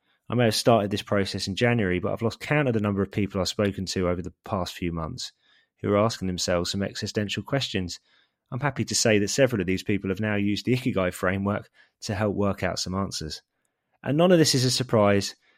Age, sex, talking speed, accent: 20-39, male, 230 wpm, British